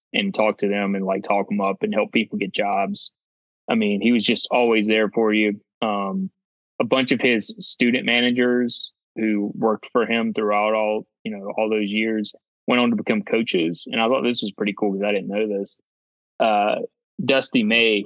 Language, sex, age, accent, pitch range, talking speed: English, male, 20-39, American, 100-120 Hz, 205 wpm